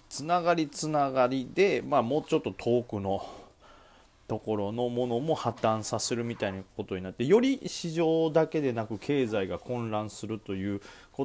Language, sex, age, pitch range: Japanese, male, 30-49, 100-130 Hz